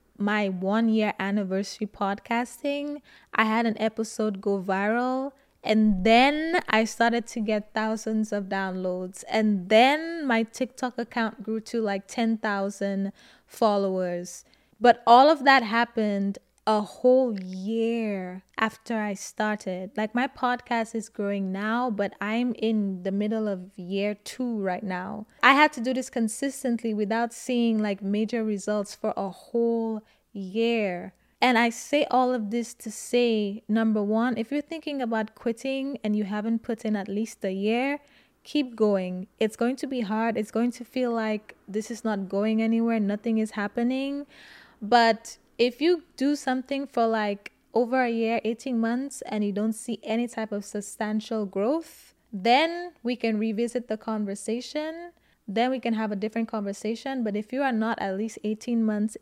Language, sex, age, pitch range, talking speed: English, female, 20-39, 210-245 Hz, 160 wpm